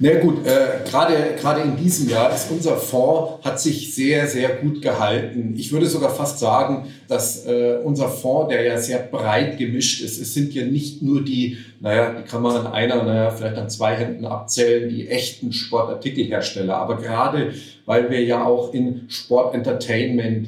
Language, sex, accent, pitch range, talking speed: German, male, German, 120-140 Hz, 175 wpm